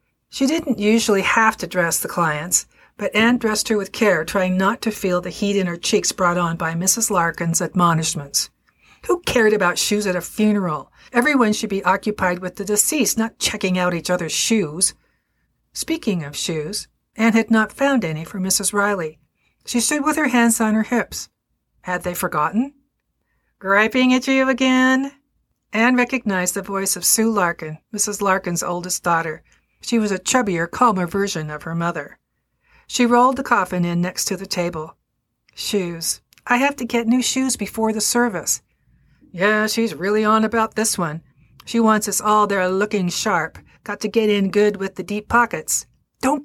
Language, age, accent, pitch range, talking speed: English, 50-69, American, 180-230 Hz, 180 wpm